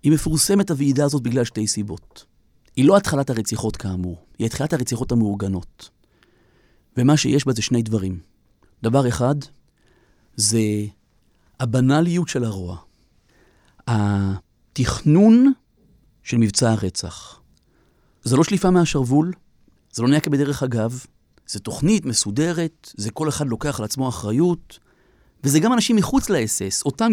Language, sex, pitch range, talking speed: Hebrew, male, 115-180 Hz, 125 wpm